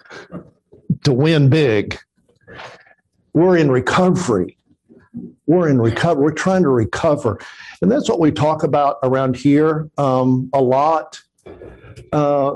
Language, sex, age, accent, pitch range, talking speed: English, male, 50-69, American, 130-175 Hz, 120 wpm